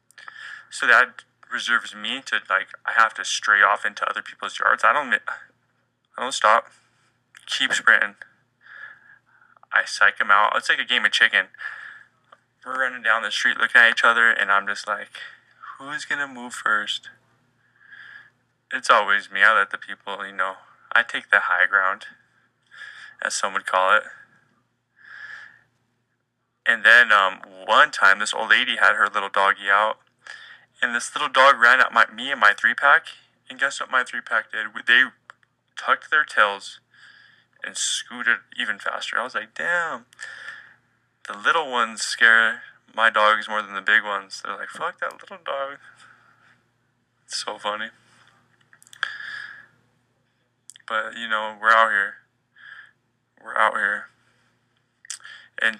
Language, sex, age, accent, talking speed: English, male, 20-39, American, 150 wpm